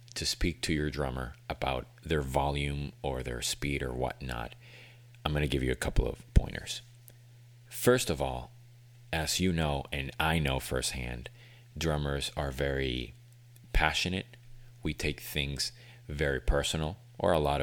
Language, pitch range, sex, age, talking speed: English, 70-115 Hz, male, 30-49, 145 wpm